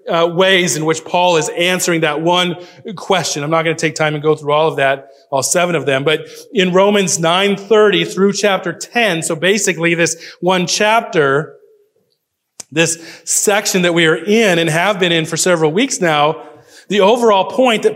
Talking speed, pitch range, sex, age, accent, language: 185 wpm, 160-235 Hz, male, 30-49, American, English